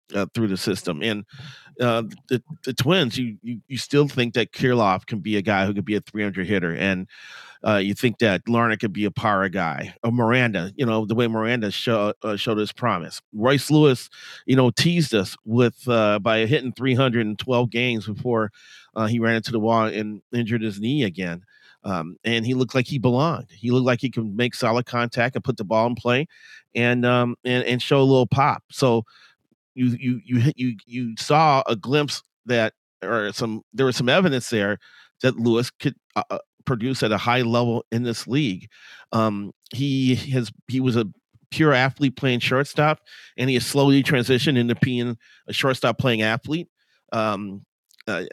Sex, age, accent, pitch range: male, 30-49, American, 110-130 Hz